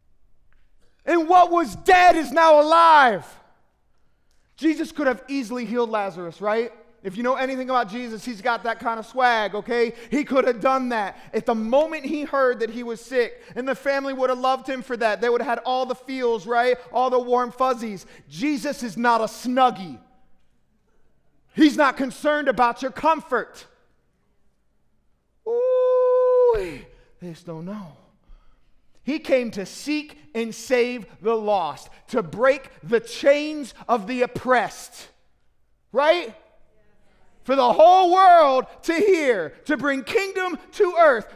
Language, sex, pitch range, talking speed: English, male, 210-290 Hz, 150 wpm